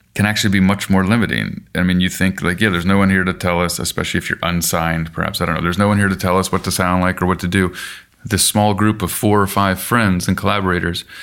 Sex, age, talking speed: male, 30-49, 280 wpm